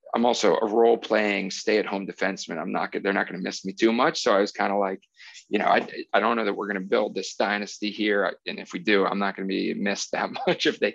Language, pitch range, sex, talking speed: English, 100-115 Hz, male, 275 wpm